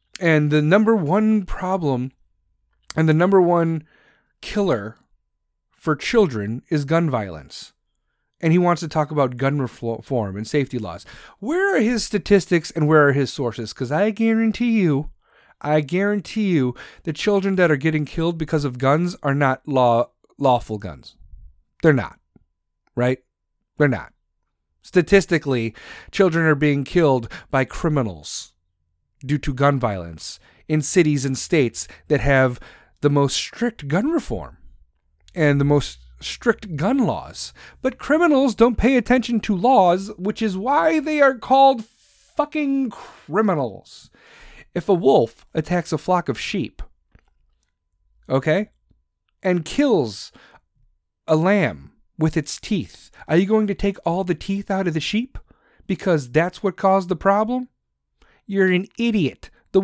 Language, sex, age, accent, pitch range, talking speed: English, male, 40-59, American, 130-200 Hz, 140 wpm